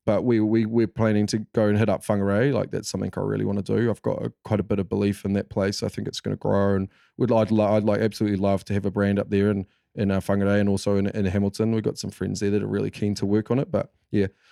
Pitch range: 105-125 Hz